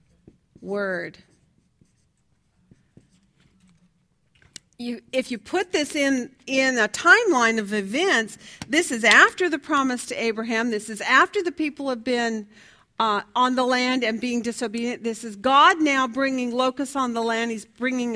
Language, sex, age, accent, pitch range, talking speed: English, female, 50-69, American, 230-305 Hz, 145 wpm